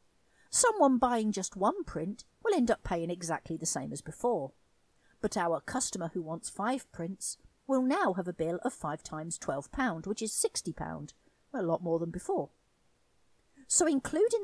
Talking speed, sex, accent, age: 165 wpm, female, British, 50-69